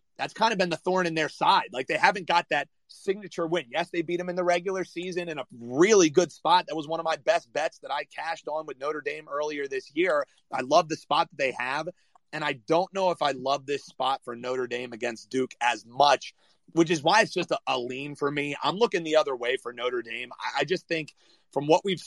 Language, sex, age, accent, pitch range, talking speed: English, male, 30-49, American, 135-180 Hz, 255 wpm